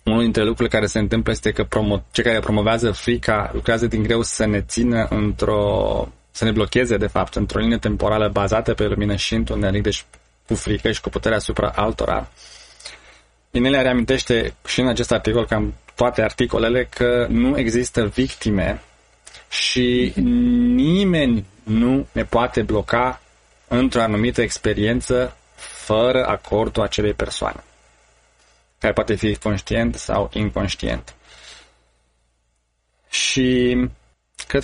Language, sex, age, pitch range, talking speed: Romanian, male, 20-39, 100-120 Hz, 130 wpm